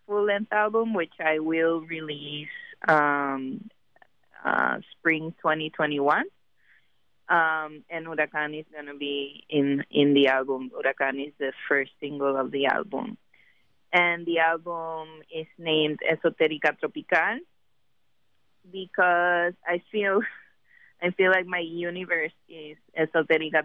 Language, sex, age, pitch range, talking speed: English, female, 20-39, 145-170 Hz, 115 wpm